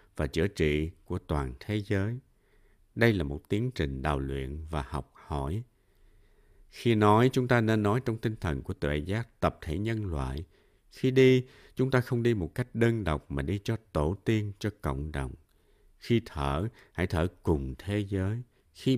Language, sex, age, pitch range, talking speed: Vietnamese, male, 60-79, 75-110 Hz, 185 wpm